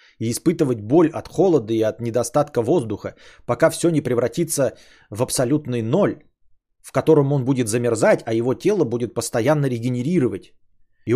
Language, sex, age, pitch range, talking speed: Bulgarian, male, 30-49, 120-160 Hz, 150 wpm